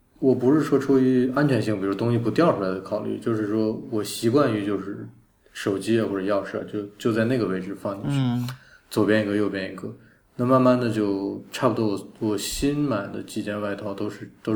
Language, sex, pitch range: Chinese, male, 100-120 Hz